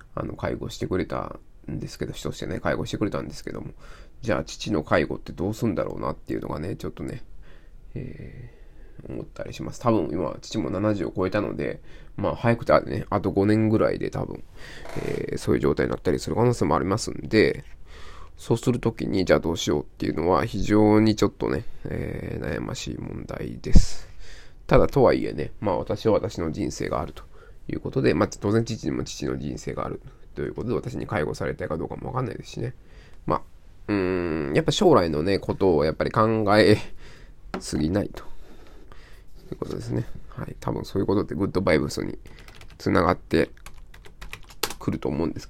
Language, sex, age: Japanese, male, 20-39